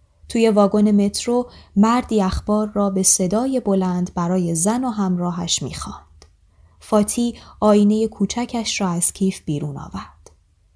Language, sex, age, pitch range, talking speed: Persian, female, 20-39, 180-240 Hz, 125 wpm